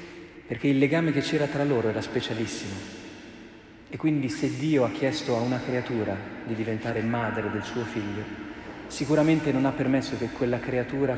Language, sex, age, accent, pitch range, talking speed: Italian, male, 40-59, native, 110-145 Hz, 165 wpm